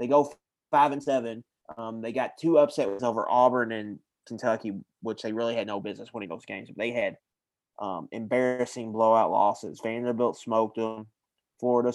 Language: English